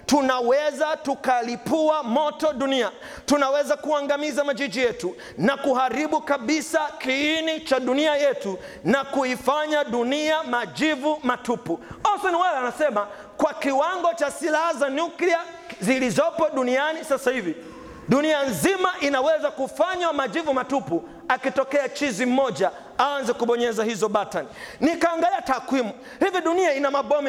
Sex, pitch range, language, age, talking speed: male, 255-305 Hz, Swahili, 40-59, 115 wpm